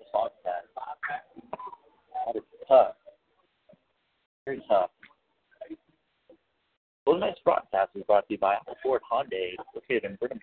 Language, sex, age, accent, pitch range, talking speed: English, male, 50-69, American, 270-425 Hz, 115 wpm